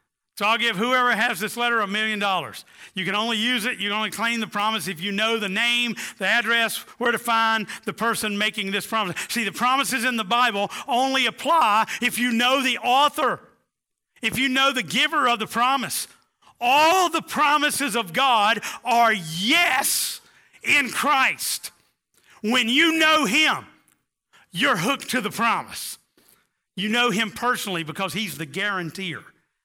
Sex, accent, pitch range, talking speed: male, American, 170-240 Hz, 170 wpm